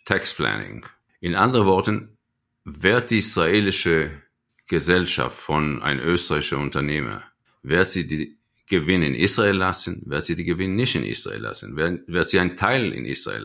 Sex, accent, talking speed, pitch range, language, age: male, German, 155 wpm, 80-110 Hz, German, 50-69